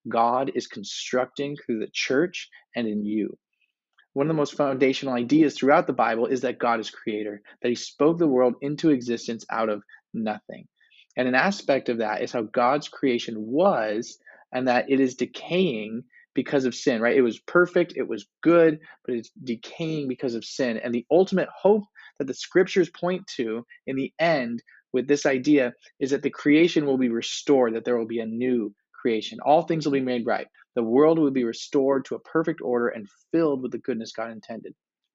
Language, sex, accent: English, male, American